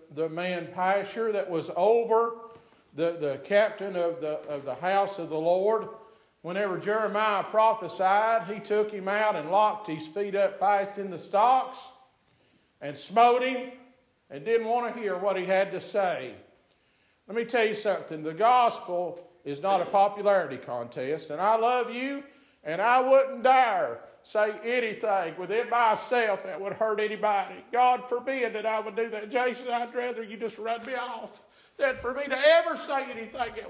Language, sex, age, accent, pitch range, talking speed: English, male, 50-69, American, 200-270 Hz, 175 wpm